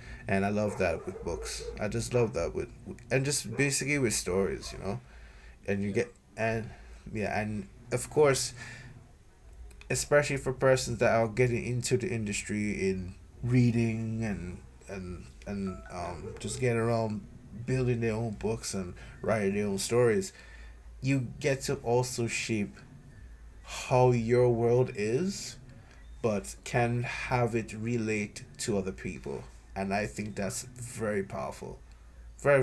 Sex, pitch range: male, 100-125 Hz